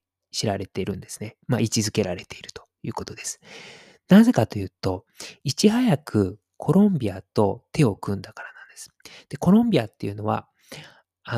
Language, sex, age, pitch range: Japanese, male, 20-39, 100-140 Hz